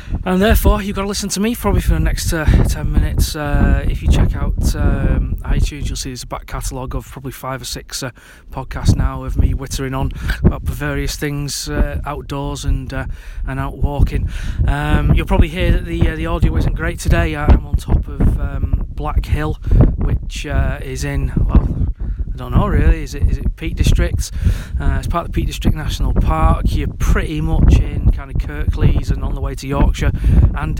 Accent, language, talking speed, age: British, English, 210 wpm, 30-49